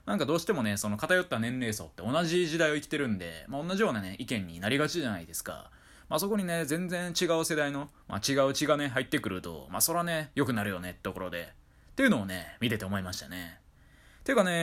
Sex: male